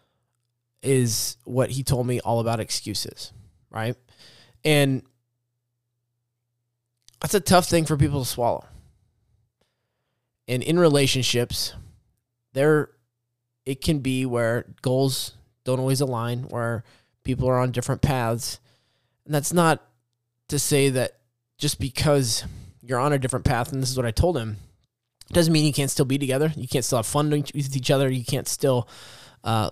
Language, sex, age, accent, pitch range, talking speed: English, male, 20-39, American, 115-135 Hz, 150 wpm